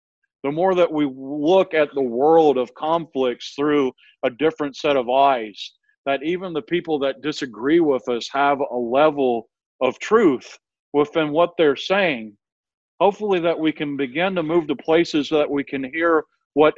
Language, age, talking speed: English, 50-69, 170 wpm